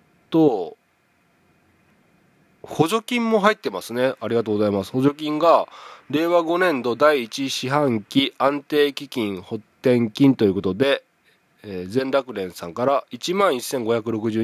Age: 20-39